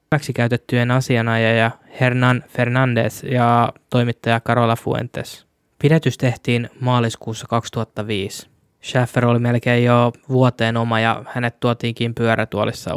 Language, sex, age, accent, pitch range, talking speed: Finnish, male, 20-39, native, 115-125 Hz, 105 wpm